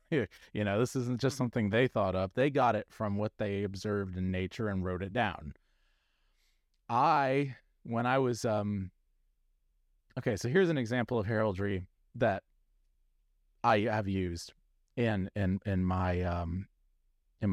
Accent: American